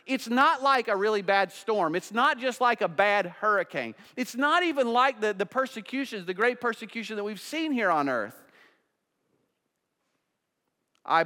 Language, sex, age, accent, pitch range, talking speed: English, male, 40-59, American, 185-270 Hz, 165 wpm